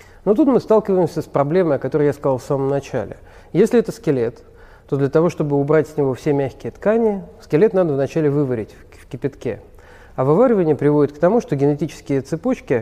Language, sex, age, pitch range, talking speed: Russian, male, 40-59, 135-180 Hz, 185 wpm